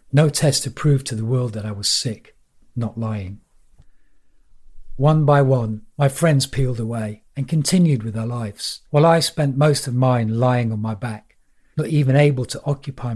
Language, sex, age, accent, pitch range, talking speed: English, male, 40-59, British, 110-145 Hz, 180 wpm